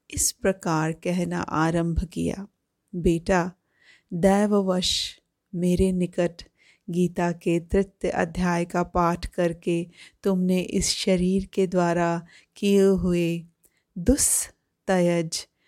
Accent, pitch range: native, 175-210 Hz